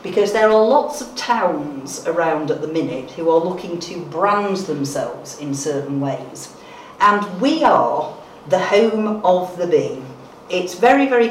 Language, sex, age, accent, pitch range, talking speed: English, female, 50-69, British, 155-195 Hz, 160 wpm